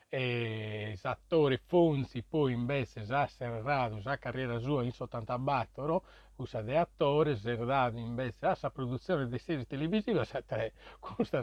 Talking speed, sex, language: 125 wpm, male, Italian